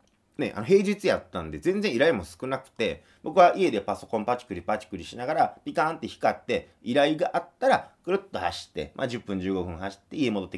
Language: Japanese